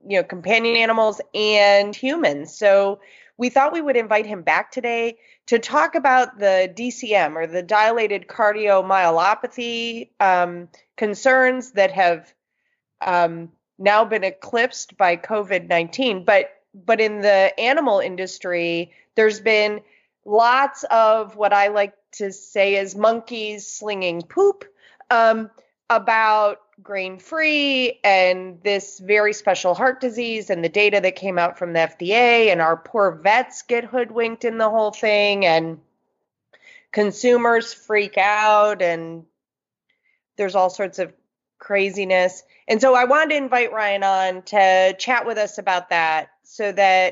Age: 30-49